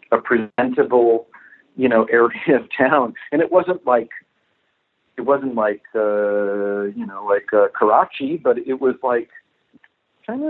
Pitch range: 120-160 Hz